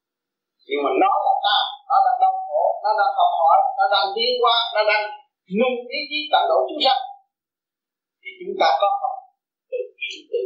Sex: male